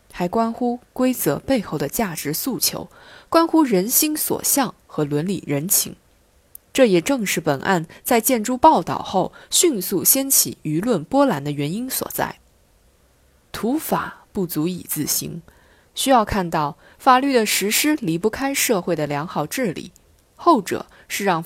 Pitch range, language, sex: 155-245 Hz, Chinese, female